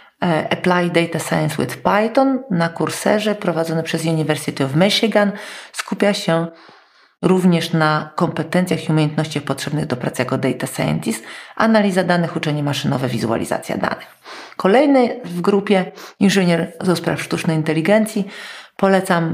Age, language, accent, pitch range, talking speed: 40-59, Polish, native, 160-205 Hz, 120 wpm